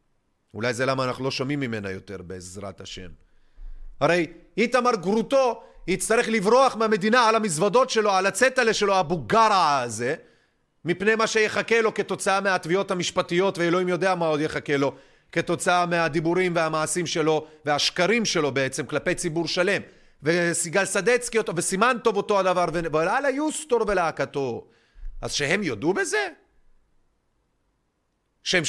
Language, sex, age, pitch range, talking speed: Hebrew, male, 30-49, 170-240 Hz, 130 wpm